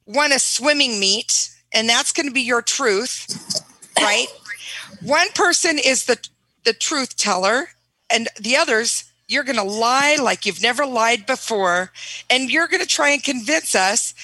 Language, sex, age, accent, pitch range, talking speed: English, female, 50-69, American, 210-280 Hz, 165 wpm